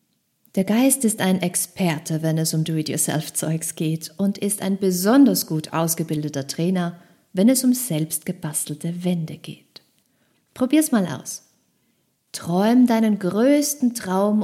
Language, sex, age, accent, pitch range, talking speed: German, female, 50-69, German, 165-225 Hz, 125 wpm